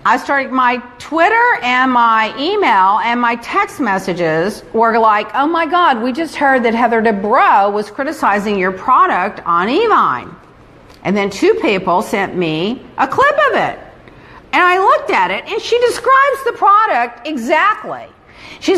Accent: American